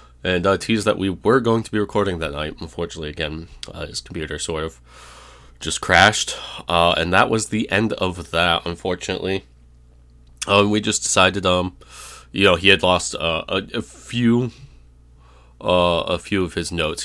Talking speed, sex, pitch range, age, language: 175 wpm, male, 75-95 Hz, 20-39, English